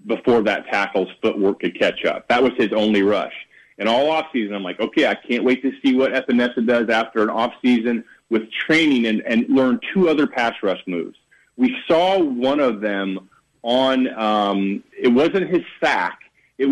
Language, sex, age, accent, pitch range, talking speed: English, male, 40-59, American, 110-160 Hz, 190 wpm